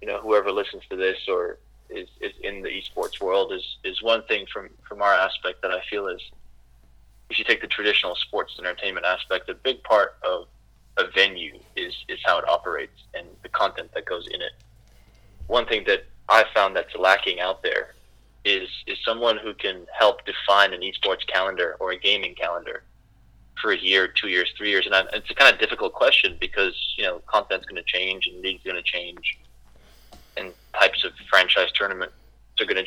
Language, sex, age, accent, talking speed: English, male, 20-39, American, 195 wpm